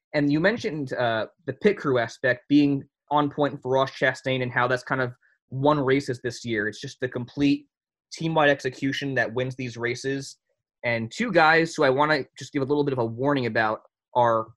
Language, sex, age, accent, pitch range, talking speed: English, male, 20-39, American, 125-145 Hz, 205 wpm